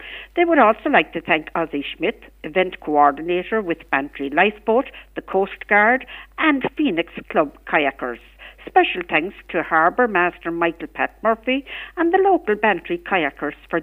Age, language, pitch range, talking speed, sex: 60-79, English, 170-275 Hz, 150 wpm, female